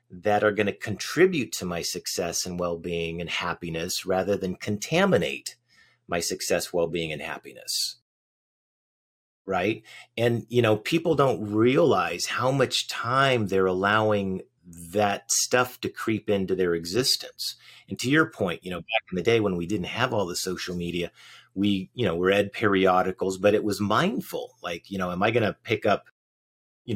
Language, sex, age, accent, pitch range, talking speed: English, male, 40-59, American, 95-115 Hz, 170 wpm